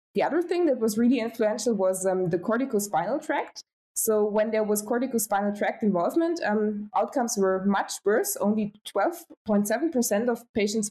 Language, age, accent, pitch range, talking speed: English, 20-39, German, 195-245 Hz, 155 wpm